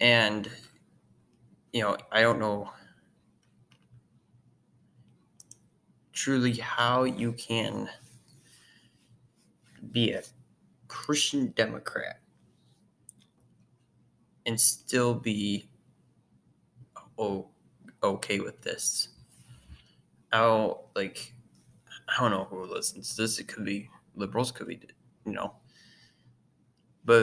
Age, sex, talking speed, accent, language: 20-39, male, 85 wpm, American, English